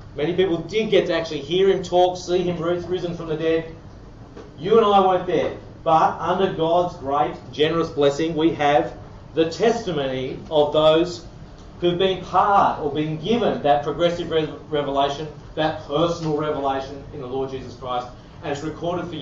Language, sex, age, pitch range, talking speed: English, male, 40-59, 140-175 Hz, 165 wpm